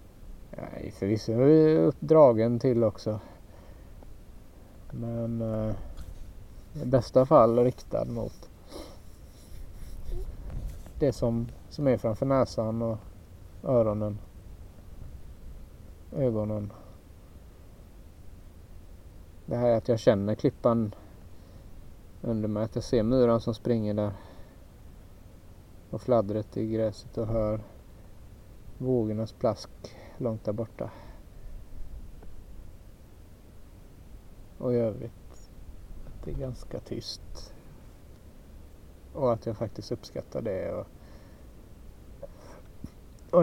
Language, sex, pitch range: Swedish, male, 90-115 Hz